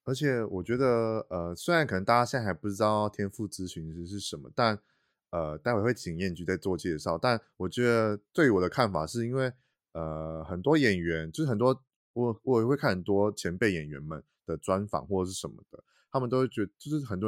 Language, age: Chinese, 20-39